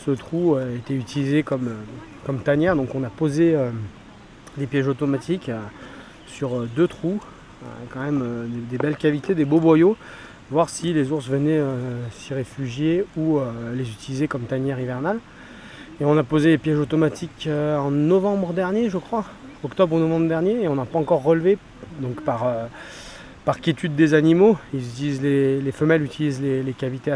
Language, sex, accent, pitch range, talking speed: French, male, French, 130-160 Hz, 190 wpm